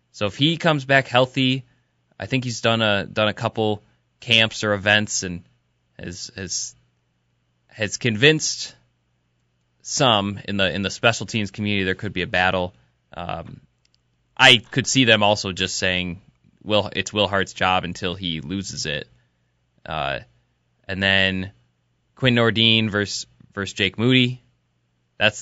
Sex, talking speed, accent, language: male, 145 wpm, American, English